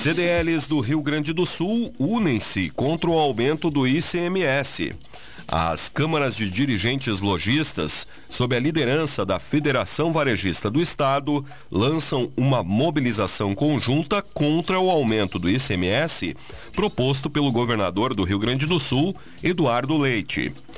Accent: Brazilian